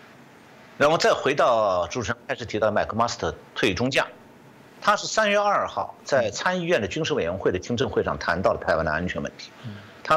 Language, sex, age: Chinese, male, 50-69